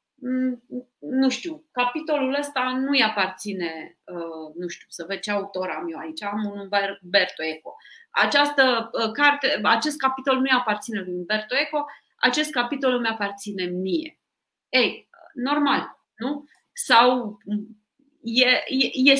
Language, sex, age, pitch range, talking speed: Romanian, female, 30-49, 200-270 Hz, 120 wpm